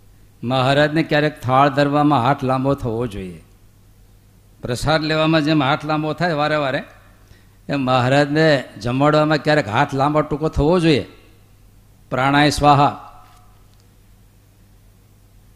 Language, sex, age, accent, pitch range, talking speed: Gujarati, male, 50-69, native, 100-150 Hz, 105 wpm